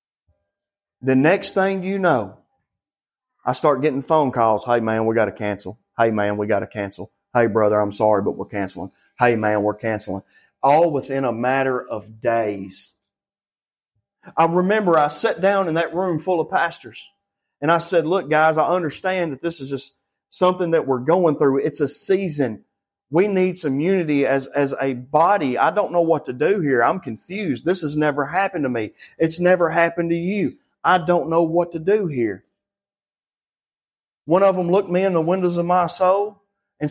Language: English